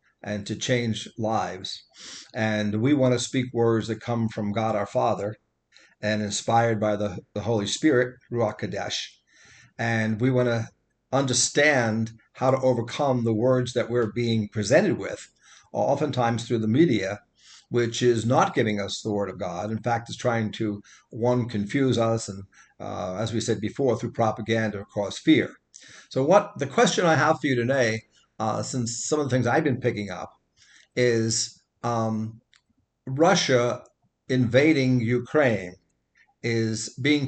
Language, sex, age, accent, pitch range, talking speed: English, male, 50-69, American, 110-130 Hz, 155 wpm